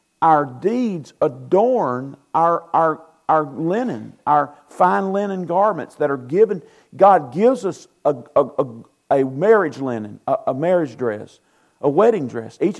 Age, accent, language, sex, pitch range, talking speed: 50-69, American, English, male, 140-190 Hz, 140 wpm